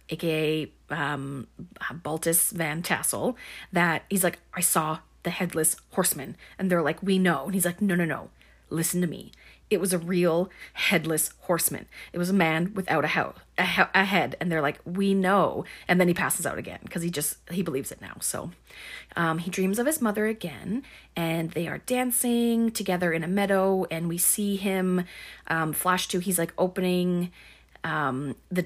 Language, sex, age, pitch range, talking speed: English, female, 30-49, 165-195 Hz, 180 wpm